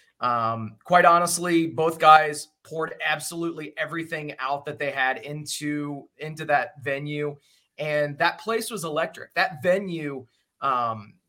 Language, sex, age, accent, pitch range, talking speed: English, male, 30-49, American, 150-180 Hz, 130 wpm